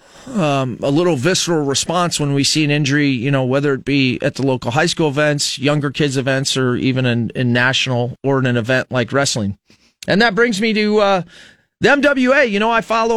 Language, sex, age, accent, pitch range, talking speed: English, male, 30-49, American, 125-190 Hz, 215 wpm